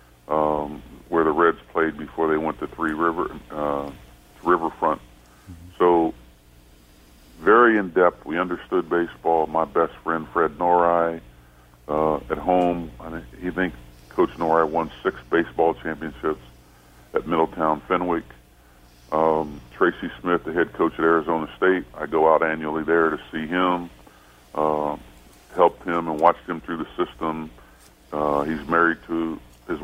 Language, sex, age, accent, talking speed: English, female, 50-69, American, 140 wpm